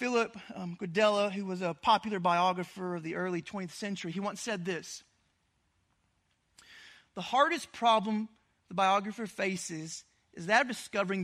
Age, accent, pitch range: 30-49, American, 175-215 Hz